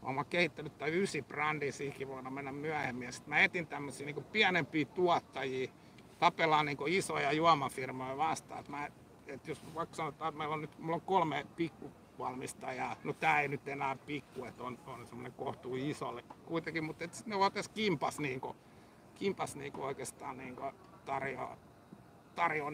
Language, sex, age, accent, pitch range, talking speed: Finnish, male, 60-79, native, 135-170 Hz, 150 wpm